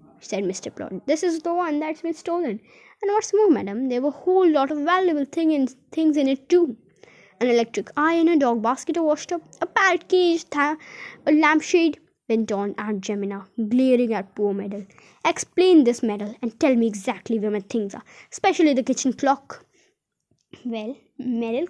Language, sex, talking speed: Hindi, female, 185 wpm